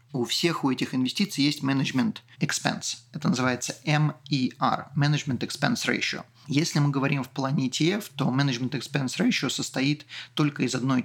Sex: male